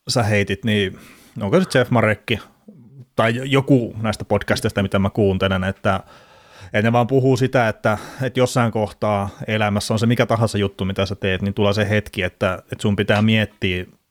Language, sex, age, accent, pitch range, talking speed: Finnish, male, 30-49, native, 100-115 Hz, 180 wpm